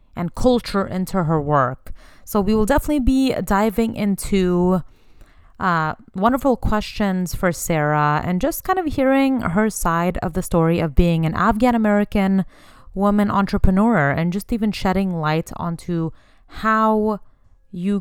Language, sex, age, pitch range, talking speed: English, female, 30-49, 165-195 Hz, 140 wpm